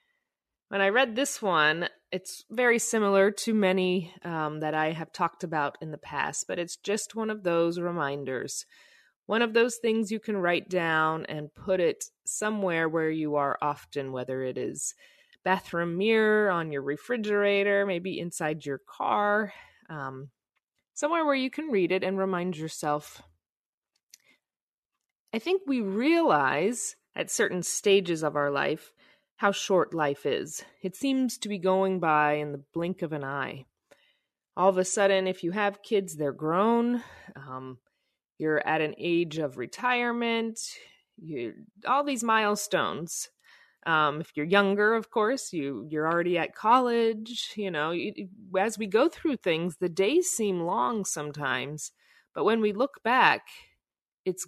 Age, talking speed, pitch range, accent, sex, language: 30-49, 155 wpm, 155-220 Hz, American, female, English